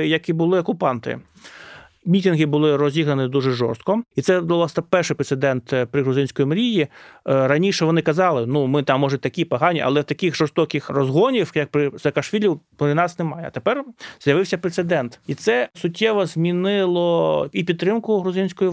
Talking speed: 155 wpm